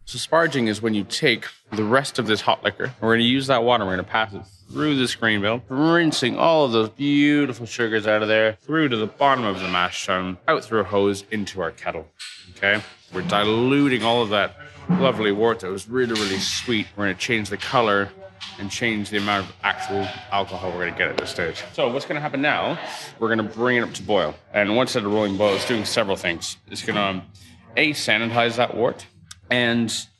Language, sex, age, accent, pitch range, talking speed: English, male, 20-39, American, 95-125 Hz, 230 wpm